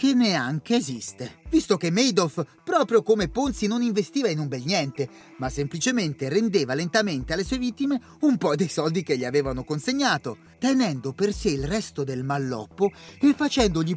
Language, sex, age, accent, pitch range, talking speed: Italian, male, 30-49, native, 145-225 Hz, 170 wpm